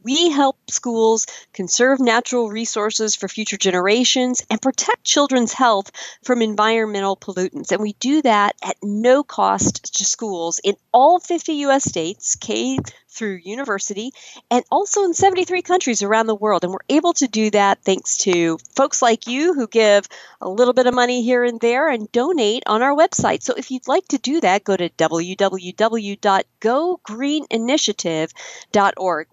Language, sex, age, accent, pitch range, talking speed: English, female, 40-59, American, 195-265 Hz, 160 wpm